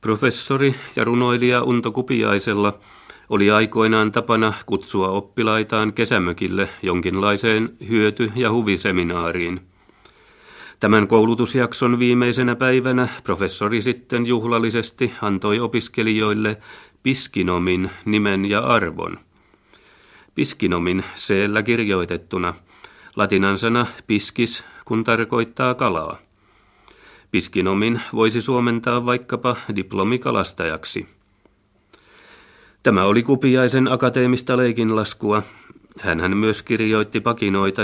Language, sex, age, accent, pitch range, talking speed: Finnish, male, 40-59, native, 100-120 Hz, 80 wpm